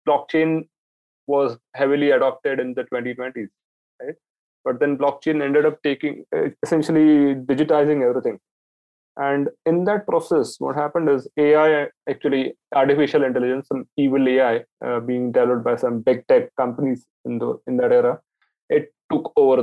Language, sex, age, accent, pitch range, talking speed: English, male, 20-39, Indian, 130-150 Hz, 140 wpm